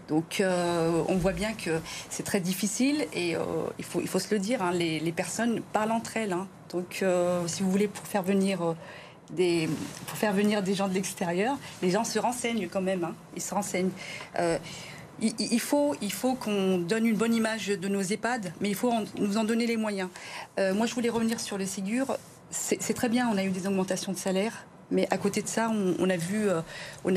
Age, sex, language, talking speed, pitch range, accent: 40-59, female, French, 230 wpm, 180-215 Hz, French